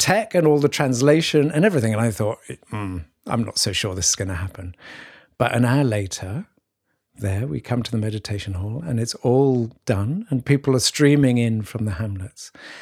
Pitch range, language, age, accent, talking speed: 105-140 Hz, English, 50-69, British, 200 wpm